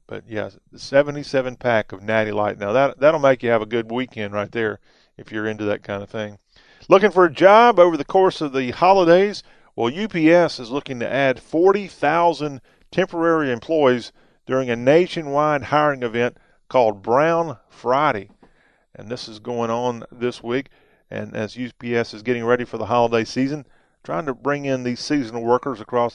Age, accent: 40-59, American